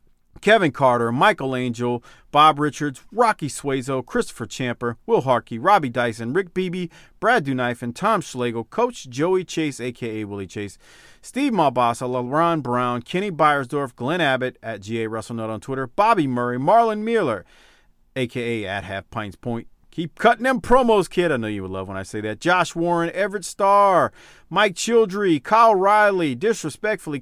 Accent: American